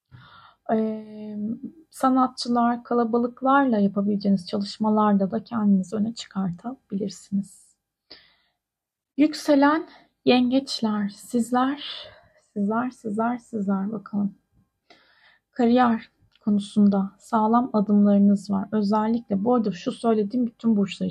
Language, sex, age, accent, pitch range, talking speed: Turkish, female, 30-49, native, 200-245 Hz, 80 wpm